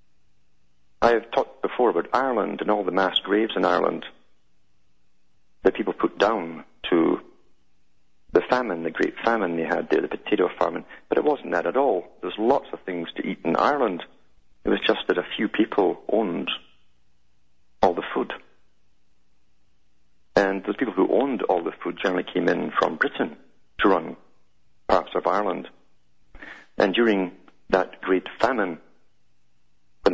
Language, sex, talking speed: English, male, 155 wpm